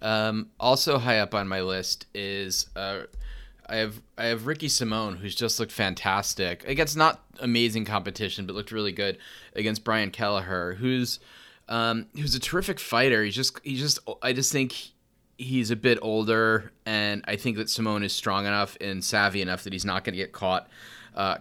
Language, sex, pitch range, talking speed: English, male, 95-115 Hz, 190 wpm